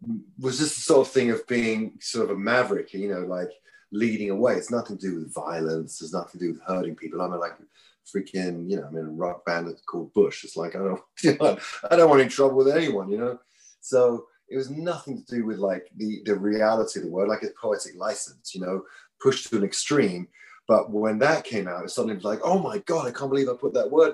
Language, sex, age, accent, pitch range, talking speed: English, male, 30-49, British, 100-135 Hz, 255 wpm